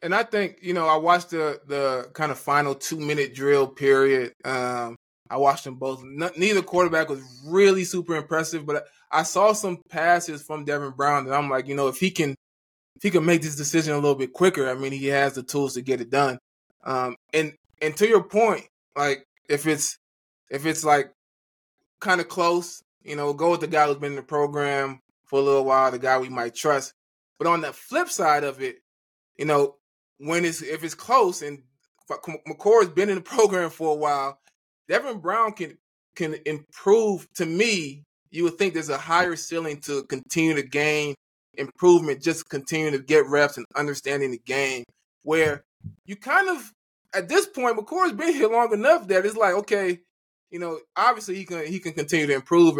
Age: 20-39